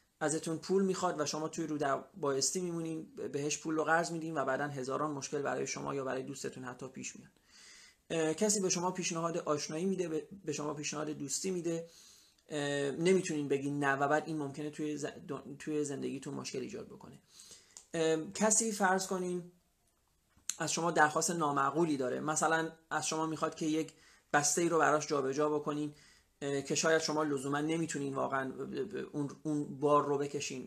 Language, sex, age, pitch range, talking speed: Persian, male, 30-49, 145-180 Hz, 155 wpm